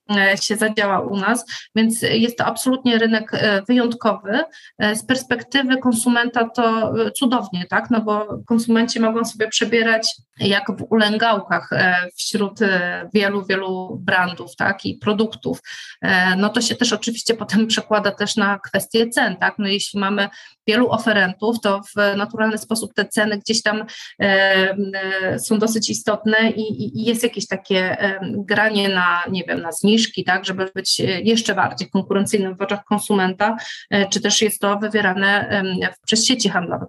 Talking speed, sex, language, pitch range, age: 145 wpm, female, Polish, 200-235 Hz, 30-49